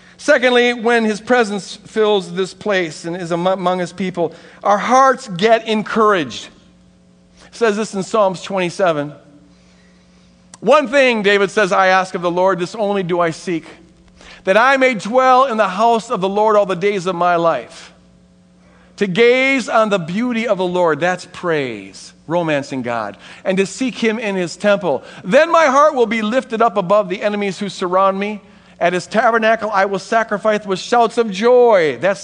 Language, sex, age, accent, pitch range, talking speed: English, male, 50-69, American, 160-215 Hz, 175 wpm